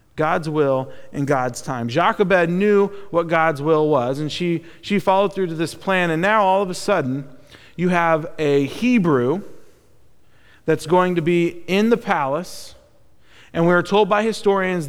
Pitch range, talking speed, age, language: 145-195 Hz, 170 wpm, 40-59, English